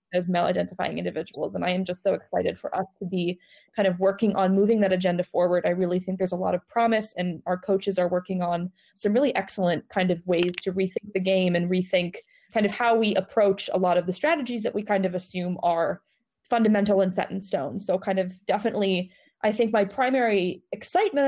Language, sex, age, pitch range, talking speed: English, female, 20-39, 185-235 Hz, 215 wpm